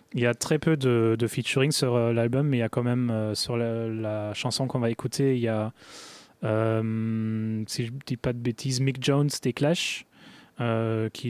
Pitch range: 115-130 Hz